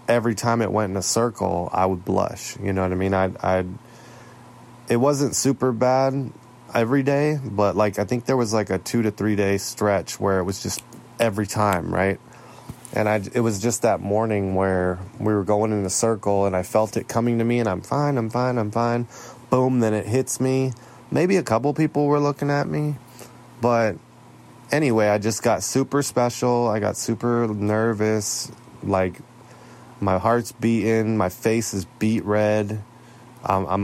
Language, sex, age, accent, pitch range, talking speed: English, male, 20-39, American, 100-125 Hz, 185 wpm